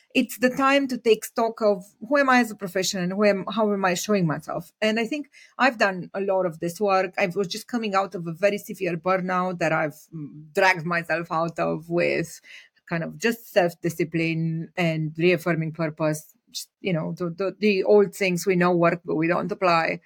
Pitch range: 175-230 Hz